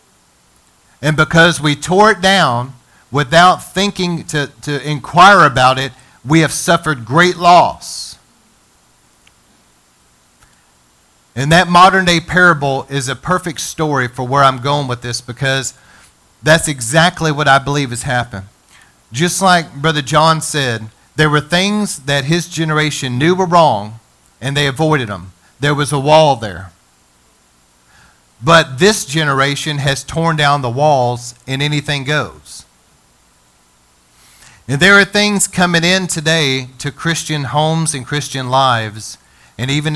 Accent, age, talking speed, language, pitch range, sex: American, 40-59, 135 wpm, English, 100-160 Hz, male